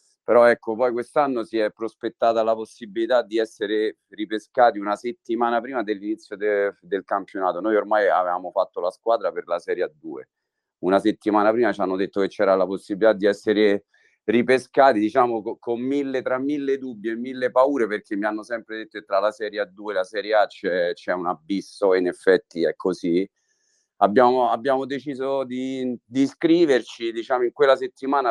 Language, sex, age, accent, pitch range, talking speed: Italian, male, 40-59, native, 105-160 Hz, 180 wpm